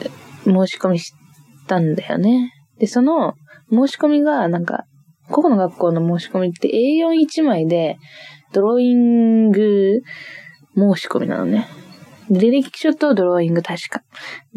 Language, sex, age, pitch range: Japanese, female, 20-39, 175-245 Hz